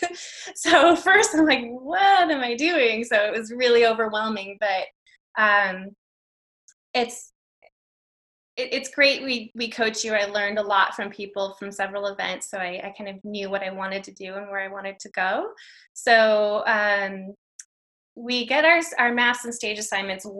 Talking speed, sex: 170 wpm, female